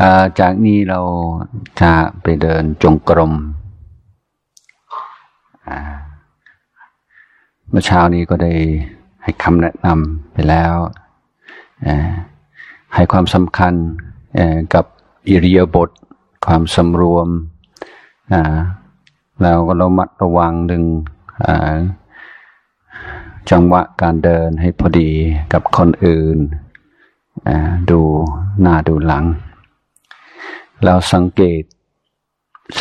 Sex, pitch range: male, 80-90 Hz